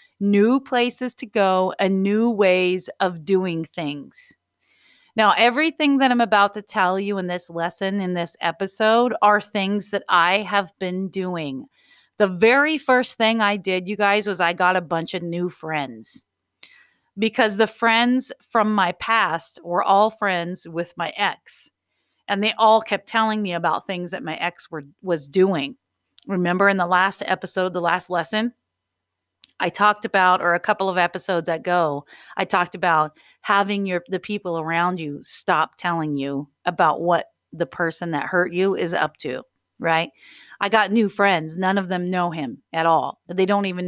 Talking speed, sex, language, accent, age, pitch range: 170 wpm, female, English, American, 30-49, 175-215 Hz